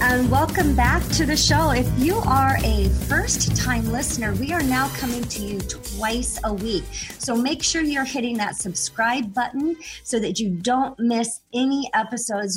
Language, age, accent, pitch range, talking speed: English, 40-59, American, 195-255 Hz, 170 wpm